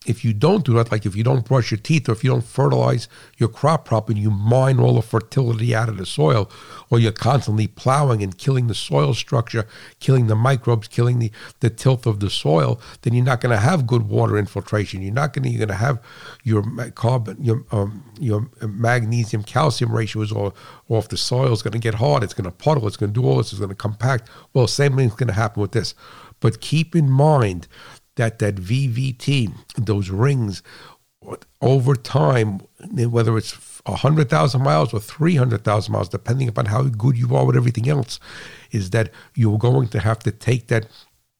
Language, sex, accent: English, male, American